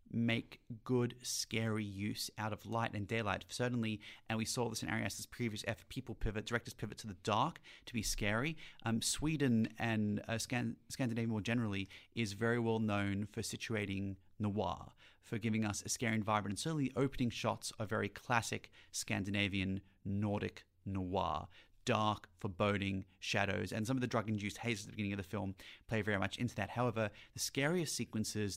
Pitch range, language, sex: 105-120 Hz, English, male